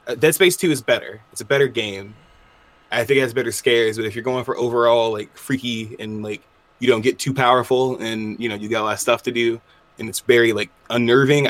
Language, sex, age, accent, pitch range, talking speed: English, male, 20-39, American, 110-130 Hz, 240 wpm